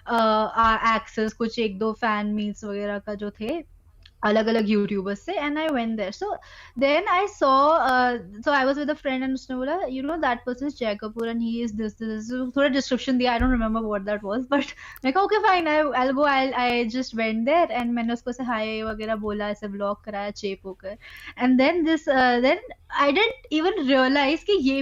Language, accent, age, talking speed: Hindi, native, 20-39, 180 wpm